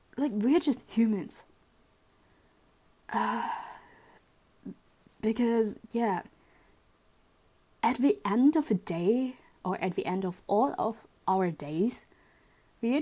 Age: 20-39